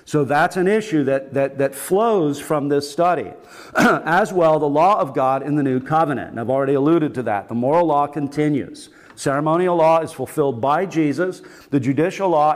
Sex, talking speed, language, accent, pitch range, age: male, 190 wpm, English, American, 135-160 Hz, 50-69